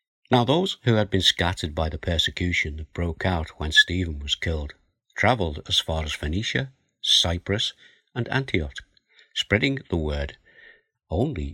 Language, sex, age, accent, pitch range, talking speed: English, male, 60-79, British, 80-105 Hz, 145 wpm